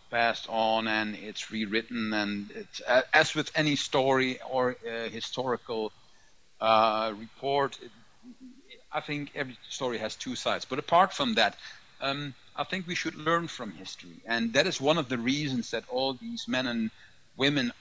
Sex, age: male, 50-69